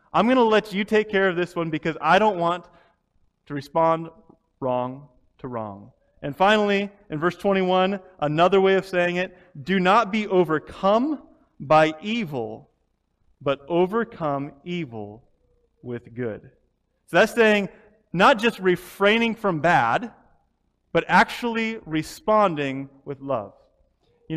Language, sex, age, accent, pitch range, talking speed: English, male, 30-49, American, 145-205 Hz, 135 wpm